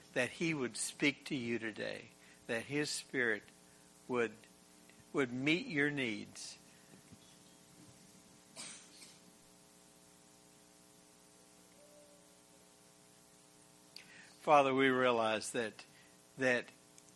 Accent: American